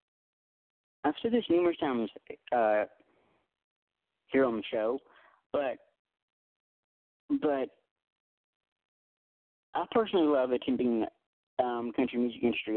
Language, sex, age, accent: English, male, 40-59, American